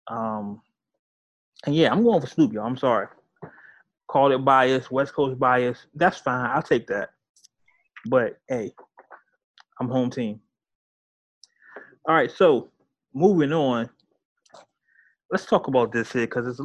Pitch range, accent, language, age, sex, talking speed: 115-135 Hz, American, English, 20-39, male, 135 wpm